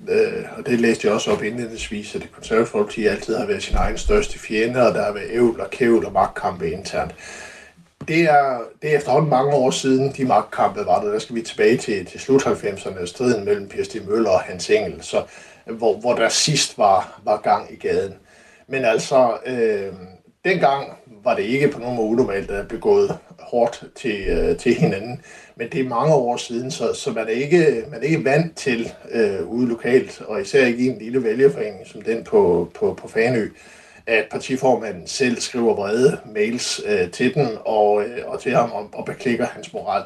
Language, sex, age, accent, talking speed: Danish, male, 60-79, native, 200 wpm